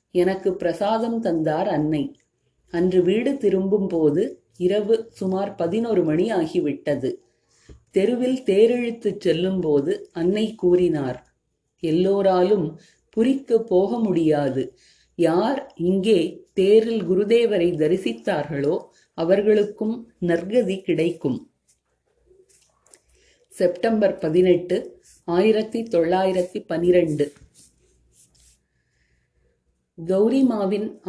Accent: native